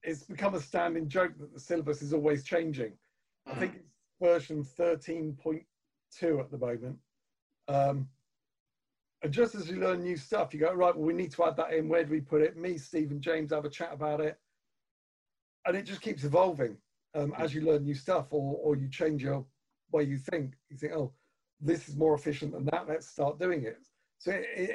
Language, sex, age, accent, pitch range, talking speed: English, male, 40-59, British, 145-170 Hz, 205 wpm